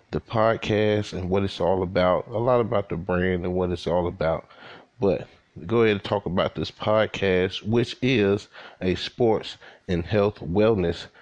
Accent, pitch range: American, 90-115 Hz